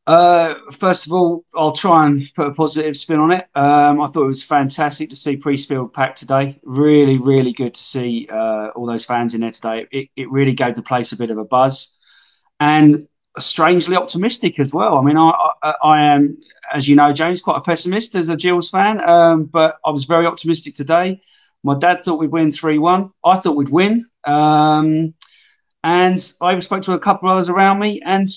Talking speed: 205 wpm